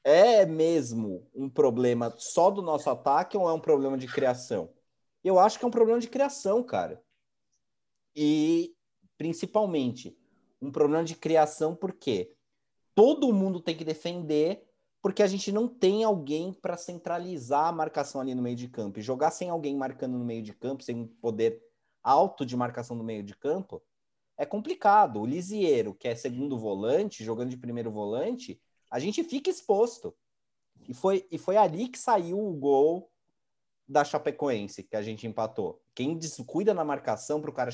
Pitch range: 130-195 Hz